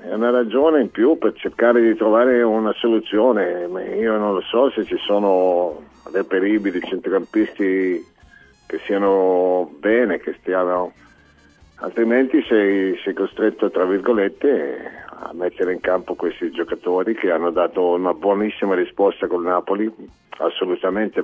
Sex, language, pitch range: male, Italian, 90-110 Hz